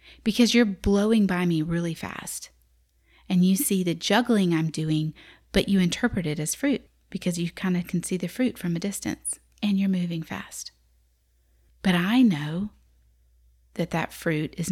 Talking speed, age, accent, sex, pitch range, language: 170 wpm, 30-49, American, female, 155-205 Hz, English